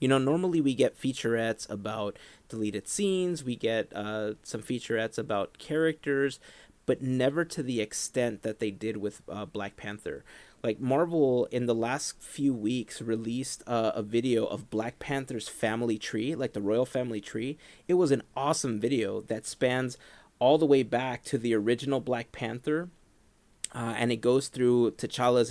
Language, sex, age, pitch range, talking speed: English, male, 30-49, 110-130 Hz, 165 wpm